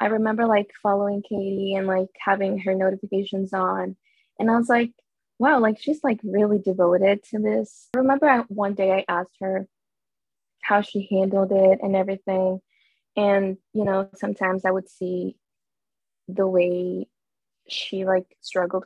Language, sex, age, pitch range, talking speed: English, female, 20-39, 185-205 Hz, 155 wpm